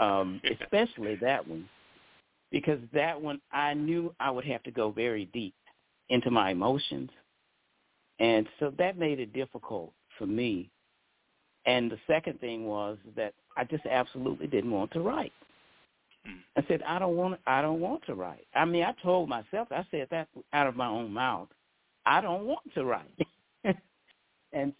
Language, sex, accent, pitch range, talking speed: English, male, American, 120-155 Hz, 165 wpm